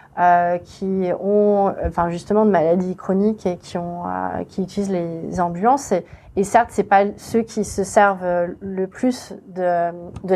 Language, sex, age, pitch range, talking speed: French, female, 30-49, 190-225 Hz, 170 wpm